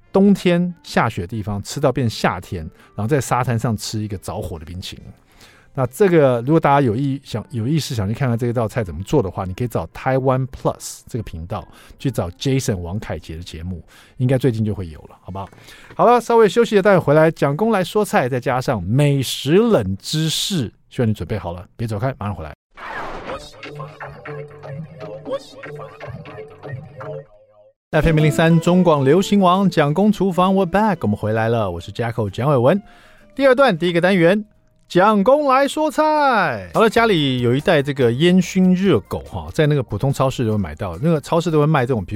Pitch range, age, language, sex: 110-170 Hz, 50-69, Chinese, male